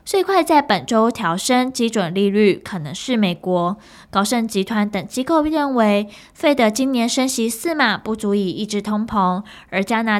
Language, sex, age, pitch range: Chinese, female, 10-29, 200-250 Hz